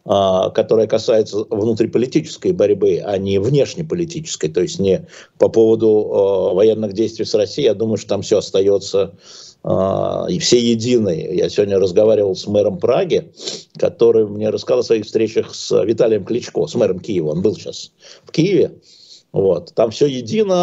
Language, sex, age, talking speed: Russian, male, 50-69, 155 wpm